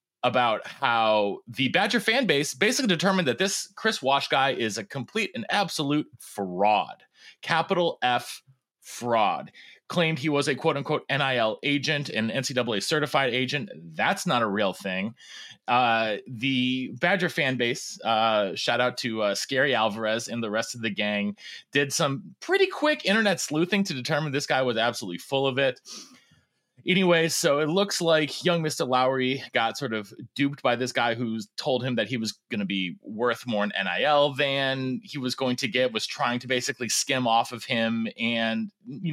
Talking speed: 175 wpm